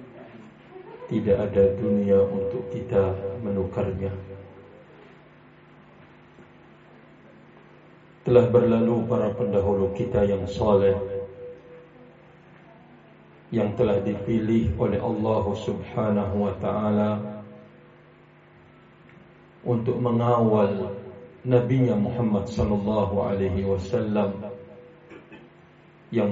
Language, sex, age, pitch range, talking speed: Indonesian, male, 50-69, 100-120 Hz, 65 wpm